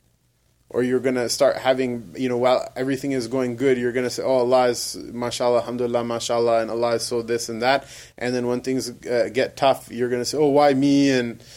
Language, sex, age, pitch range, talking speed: English, male, 20-39, 125-155 Hz, 235 wpm